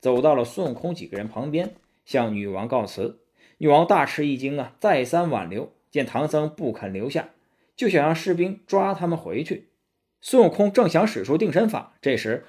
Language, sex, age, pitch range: Chinese, male, 20-39, 115-175 Hz